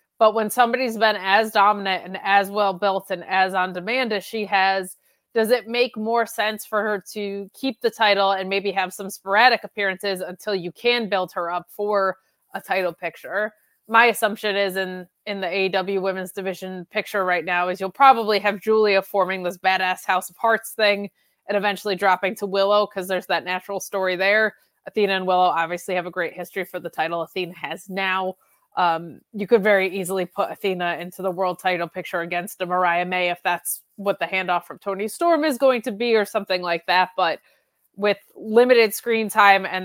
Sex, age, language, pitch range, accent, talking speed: female, 20-39, English, 180-210 Hz, American, 195 wpm